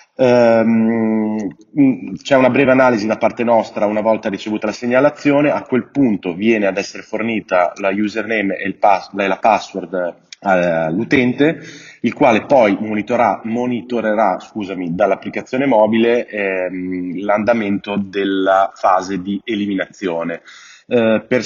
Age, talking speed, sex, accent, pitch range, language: 30-49, 120 wpm, male, native, 100-115 Hz, Italian